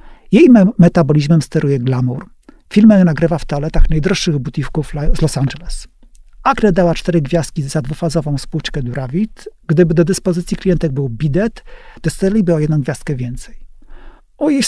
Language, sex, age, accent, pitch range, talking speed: English, male, 40-59, Polish, 155-195 Hz, 135 wpm